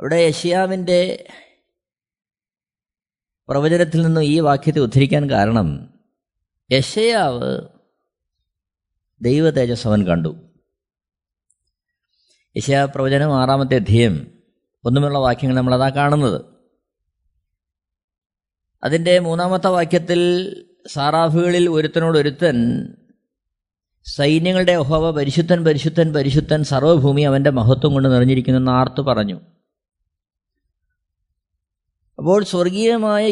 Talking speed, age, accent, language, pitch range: 75 wpm, 20-39, native, Malayalam, 115-170 Hz